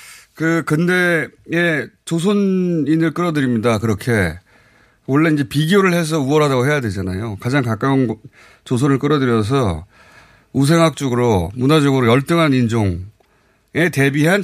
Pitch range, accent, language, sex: 110-170 Hz, native, Korean, male